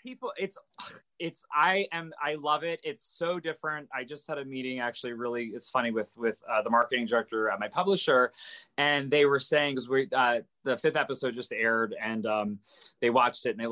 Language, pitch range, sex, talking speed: English, 120-155 Hz, male, 210 wpm